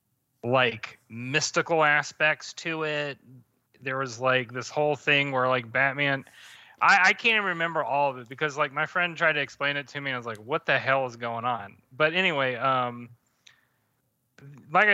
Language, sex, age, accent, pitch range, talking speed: English, male, 30-49, American, 125-170 Hz, 185 wpm